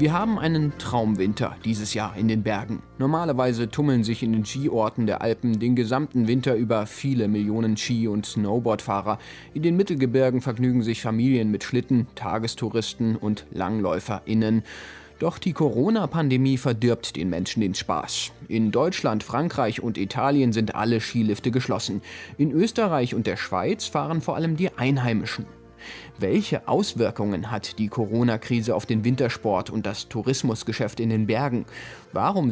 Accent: German